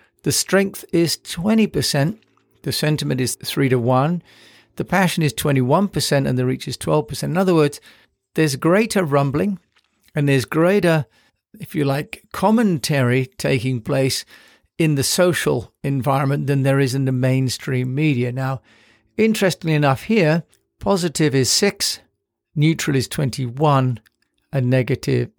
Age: 50-69